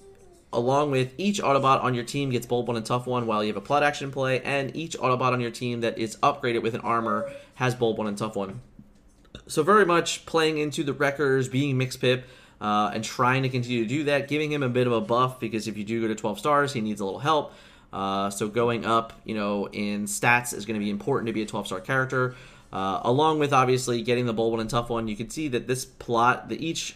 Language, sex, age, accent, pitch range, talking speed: English, male, 20-39, American, 110-135 Hz, 255 wpm